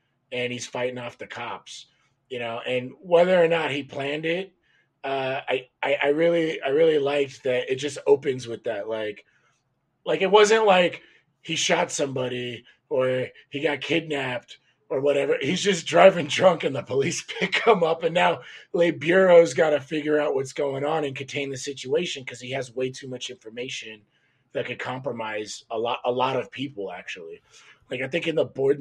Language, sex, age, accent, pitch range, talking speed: English, male, 30-49, American, 125-165 Hz, 190 wpm